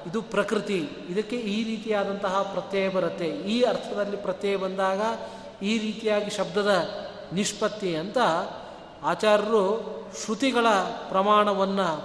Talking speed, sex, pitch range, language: 95 wpm, male, 180-215 Hz, Kannada